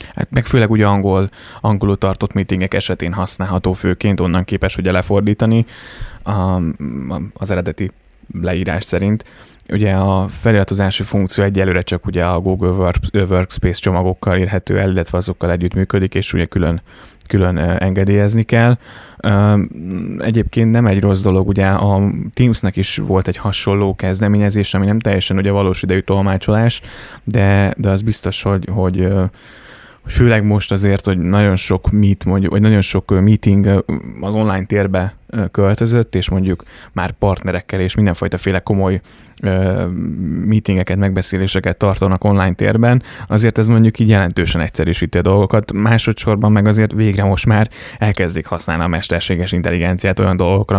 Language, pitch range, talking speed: Hungarian, 95-105 Hz, 140 wpm